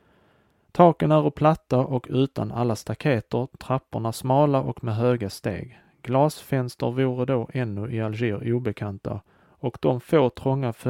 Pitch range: 115-140 Hz